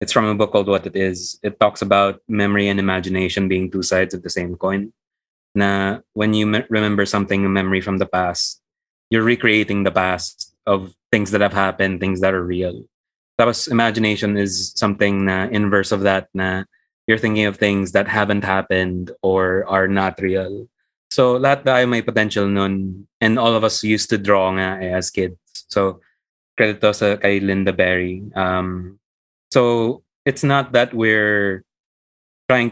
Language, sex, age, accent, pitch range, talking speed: Filipino, male, 20-39, native, 95-110 Hz, 170 wpm